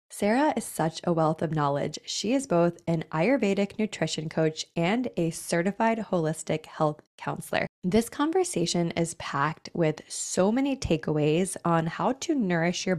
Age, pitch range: 20-39, 155-195 Hz